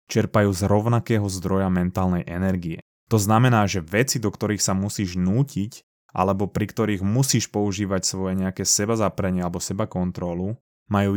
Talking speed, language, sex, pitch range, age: 145 wpm, Slovak, male, 95-110 Hz, 20-39